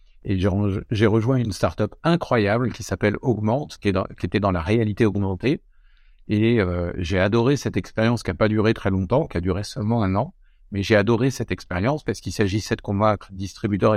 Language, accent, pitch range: French, French, 95-120 Hz